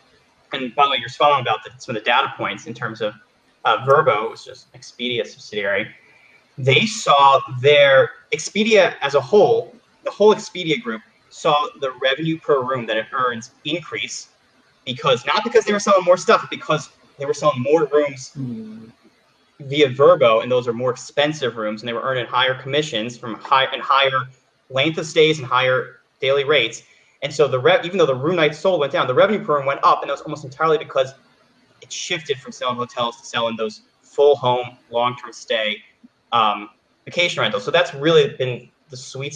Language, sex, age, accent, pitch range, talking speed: English, male, 30-49, American, 125-175 Hz, 195 wpm